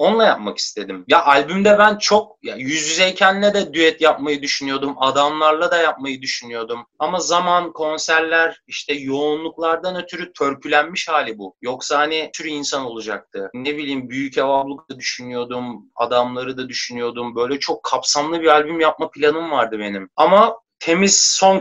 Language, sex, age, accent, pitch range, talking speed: Turkish, male, 30-49, native, 125-165 Hz, 145 wpm